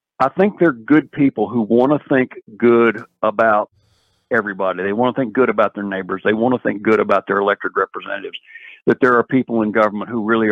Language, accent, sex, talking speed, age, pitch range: English, American, male, 210 wpm, 50-69, 105-130 Hz